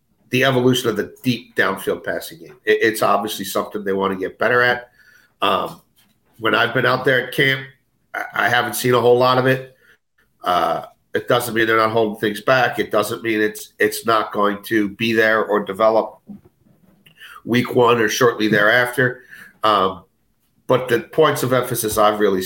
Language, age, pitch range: English, 50-69, 105-125 Hz